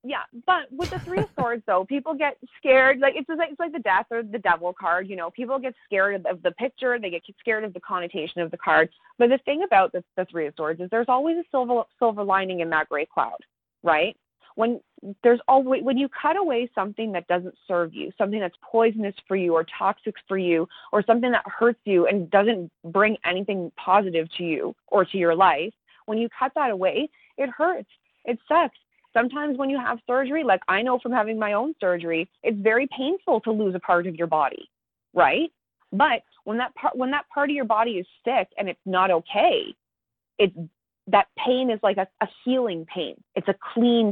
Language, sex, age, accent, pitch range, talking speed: English, female, 20-39, American, 180-250 Hz, 215 wpm